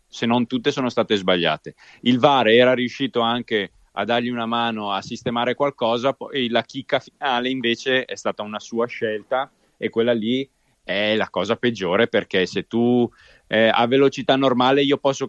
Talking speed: 175 wpm